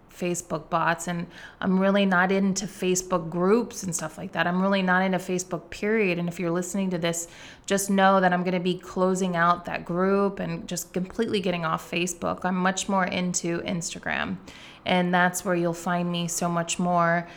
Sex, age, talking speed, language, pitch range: female, 20-39, 195 wpm, English, 170-190 Hz